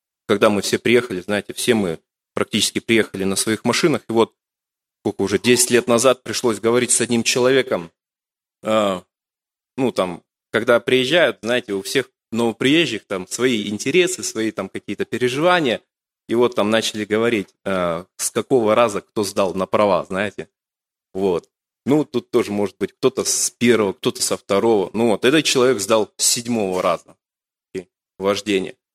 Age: 20-39